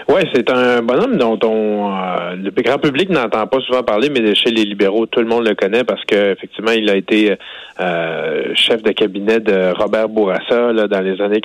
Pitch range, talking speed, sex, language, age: 100-125 Hz, 205 wpm, male, French, 30-49